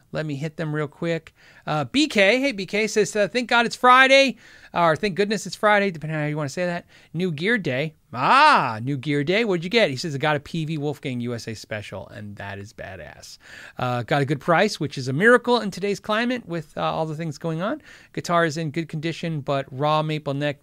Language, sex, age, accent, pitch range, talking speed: English, male, 40-59, American, 130-180 Hz, 235 wpm